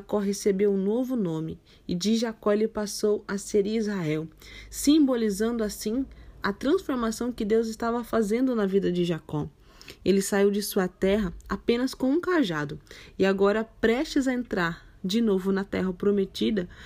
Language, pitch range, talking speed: Portuguese, 190-225 Hz, 155 wpm